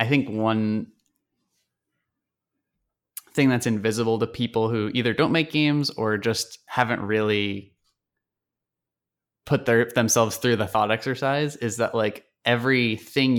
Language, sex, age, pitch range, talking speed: English, male, 20-39, 110-130 Hz, 125 wpm